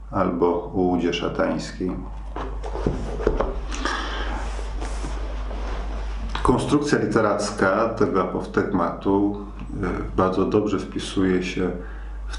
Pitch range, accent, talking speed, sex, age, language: 85-100 Hz, native, 60 wpm, male, 40-59, Polish